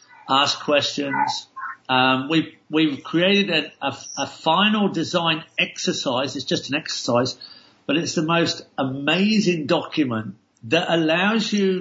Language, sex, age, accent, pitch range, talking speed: English, male, 50-69, British, 145-185 Hz, 125 wpm